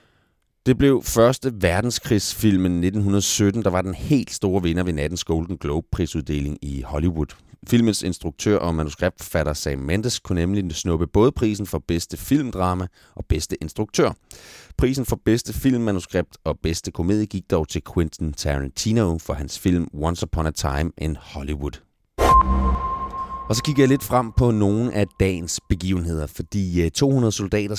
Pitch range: 80-105 Hz